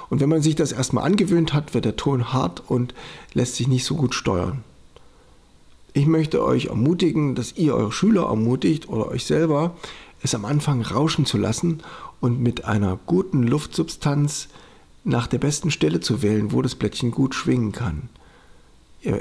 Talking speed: 170 wpm